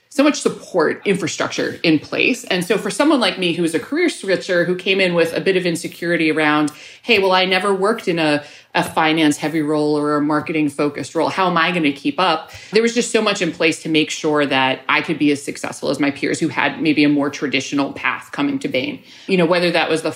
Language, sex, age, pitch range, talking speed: English, female, 30-49, 150-190 Hz, 245 wpm